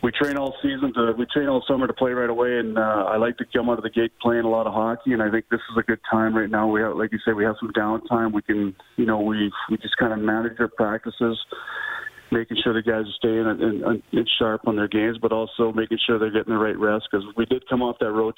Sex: male